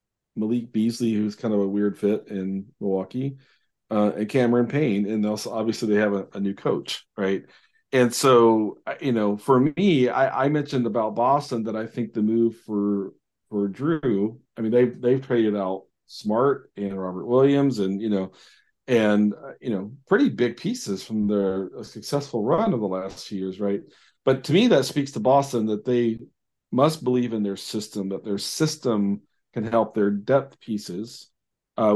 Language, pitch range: English, 105-130 Hz